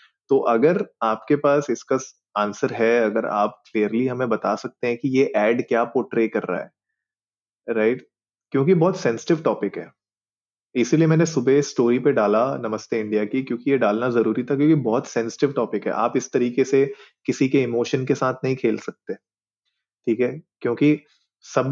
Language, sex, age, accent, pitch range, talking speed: Hindi, male, 30-49, native, 115-140 Hz, 175 wpm